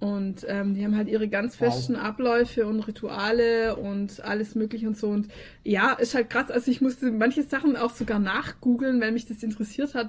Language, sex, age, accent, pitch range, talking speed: German, female, 20-39, German, 215-265 Hz, 200 wpm